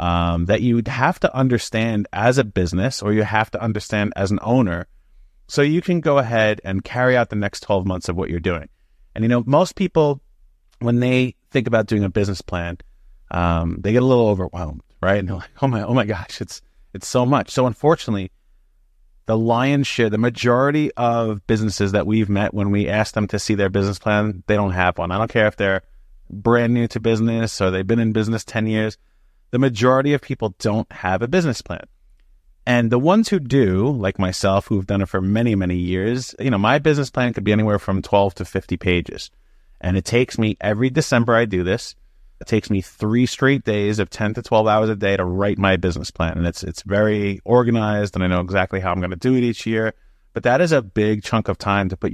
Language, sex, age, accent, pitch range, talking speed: English, male, 30-49, American, 95-120 Hz, 225 wpm